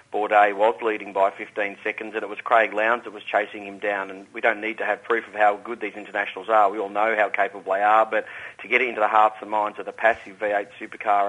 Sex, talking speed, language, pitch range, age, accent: male, 260 wpm, English, 105-125 Hz, 40-59, Australian